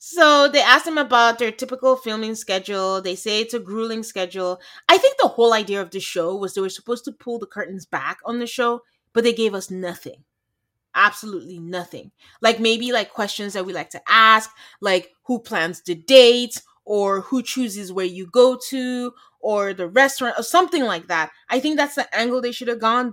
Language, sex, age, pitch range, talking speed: English, female, 30-49, 180-235 Hz, 205 wpm